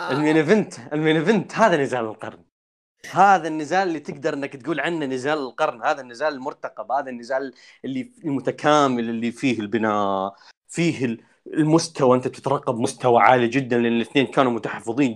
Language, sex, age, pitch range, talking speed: Arabic, male, 30-49, 110-140 Hz, 140 wpm